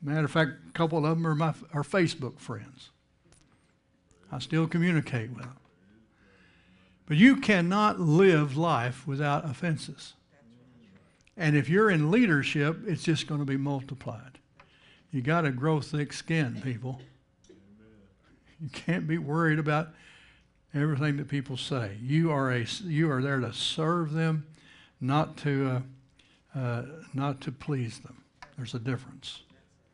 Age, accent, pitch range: 60-79, American, 125-160 Hz